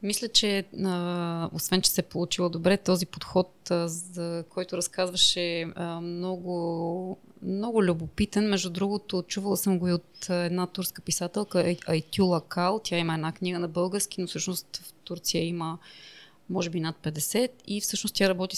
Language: Bulgarian